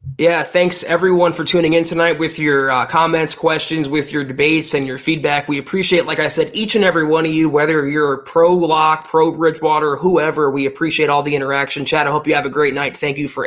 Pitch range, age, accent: 150-170 Hz, 20-39, American